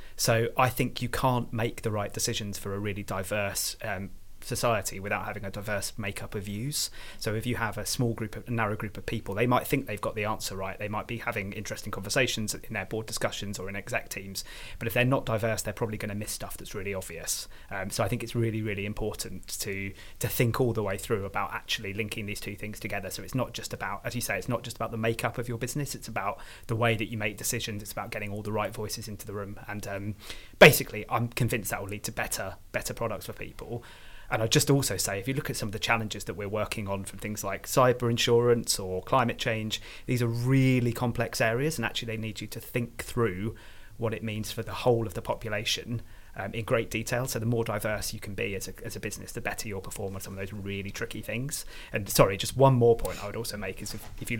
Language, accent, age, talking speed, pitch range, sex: English, British, 30-49, 255 wpm, 100-120 Hz, male